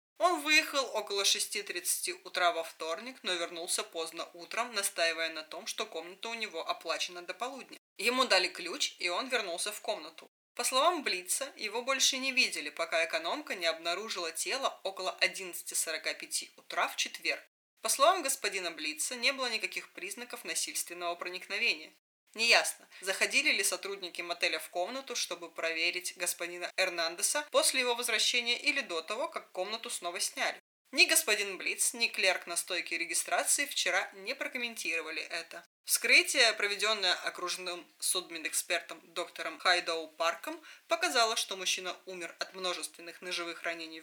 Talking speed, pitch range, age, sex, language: 140 wpm, 175-250 Hz, 20-39, female, Russian